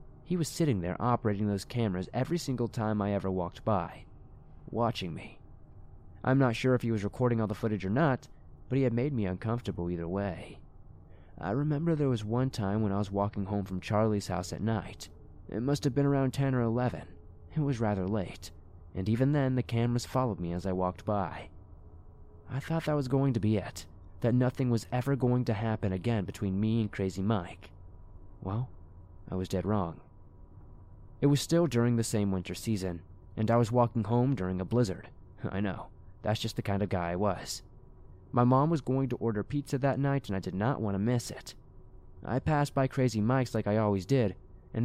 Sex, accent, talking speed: male, American, 205 wpm